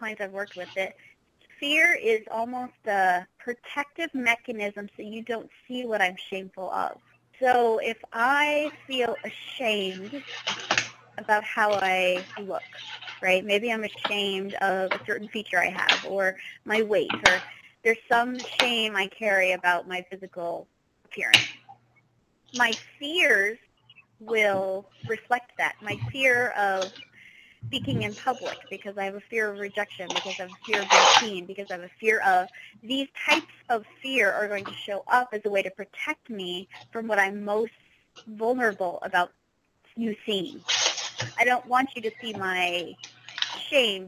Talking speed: 155 wpm